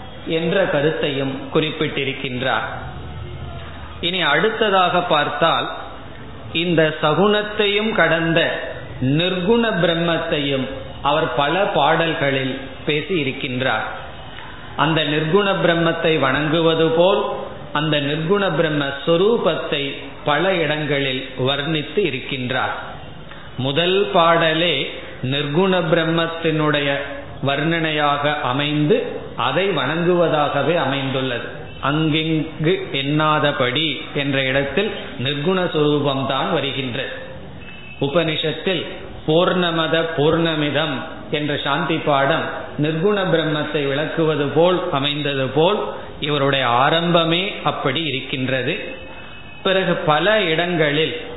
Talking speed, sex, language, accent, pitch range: 70 wpm, male, Tamil, native, 140-165 Hz